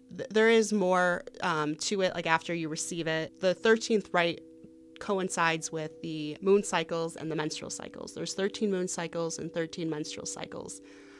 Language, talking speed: English, 165 wpm